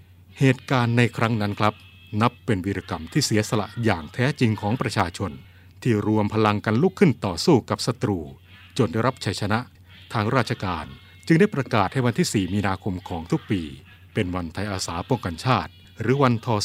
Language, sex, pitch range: Thai, male, 95-120 Hz